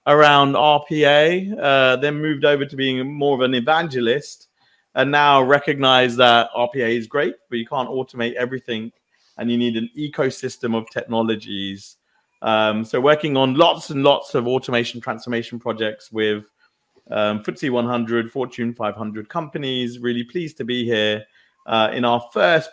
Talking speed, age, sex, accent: 155 wpm, 30-49, male, British